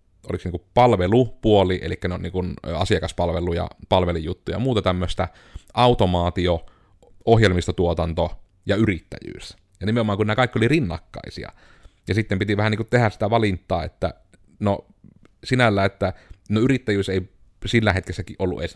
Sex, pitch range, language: male, 90-105 Hz, Finnish